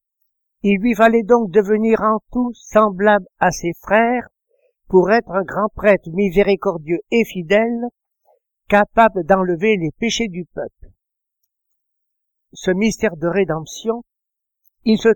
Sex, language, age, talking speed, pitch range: male, French, 60-79, 125 wpm, 175-220 Hz